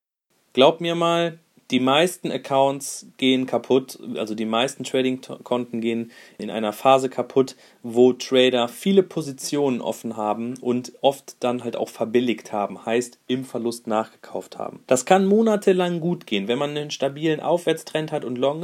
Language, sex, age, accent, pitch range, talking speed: German, male, 30-49, German, 115-135 Hz, 155 wpm